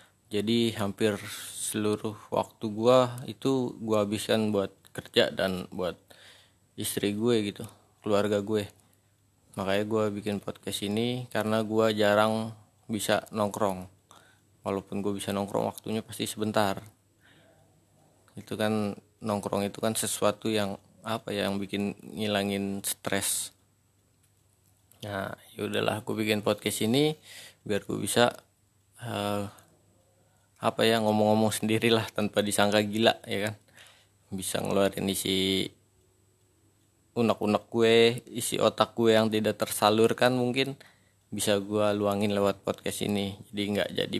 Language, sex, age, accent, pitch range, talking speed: Indonesian, male, 20-39, native, 100-110 Hz, 120 wpm